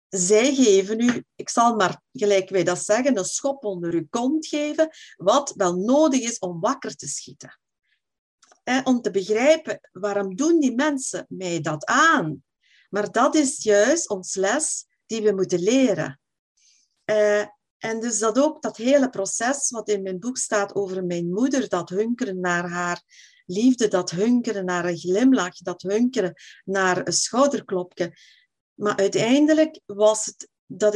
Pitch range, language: 185-260 Hz, Dutch